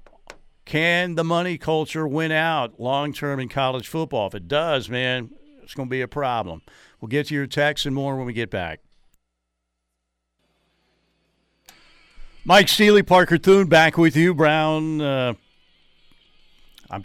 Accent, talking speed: American, 145 wpm